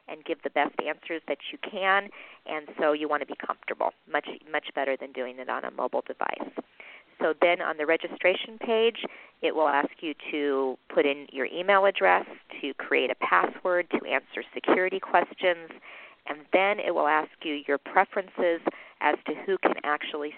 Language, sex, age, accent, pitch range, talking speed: English, female, 40-59, American, 145-180 Hz, 185 wpm